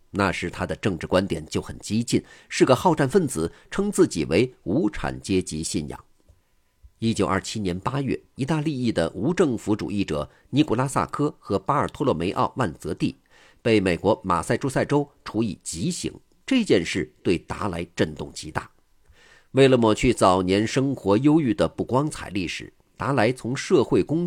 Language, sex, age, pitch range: Chinese, male, 50-69, 95-140 Hz